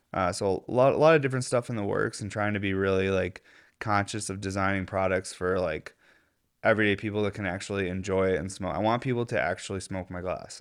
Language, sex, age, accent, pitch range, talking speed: English, male, 20-39, American, 95-110 Hz, 230 wpm